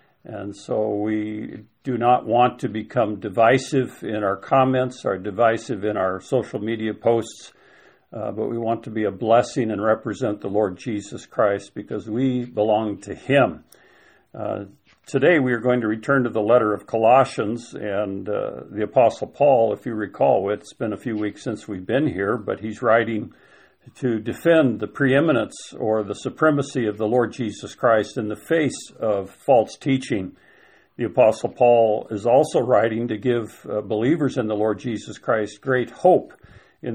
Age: 50-69